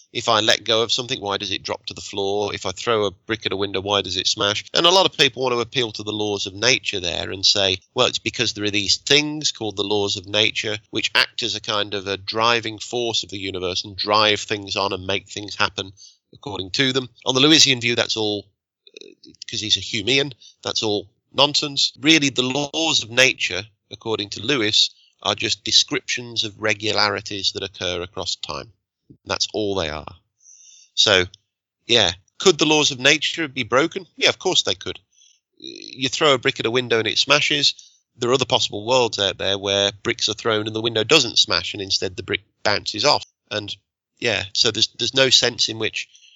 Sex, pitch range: male, 100-130 Hz